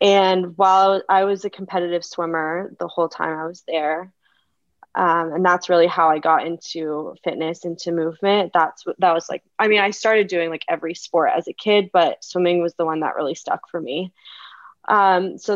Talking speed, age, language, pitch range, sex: 200 wpm, 20-39, English, 170-195 Hz, female